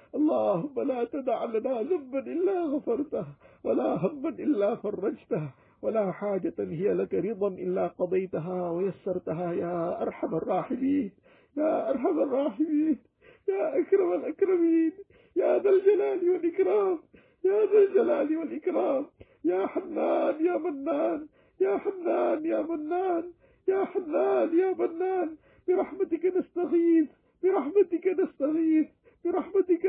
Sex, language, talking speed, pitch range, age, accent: male, English, 110 wpm, 300-375 Hz, 50-69, Lebanese